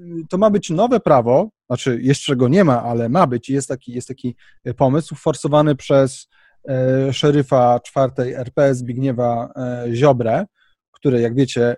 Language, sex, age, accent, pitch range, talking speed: Polish, male, 30-49, native, 125-165 Hz, 155 wpm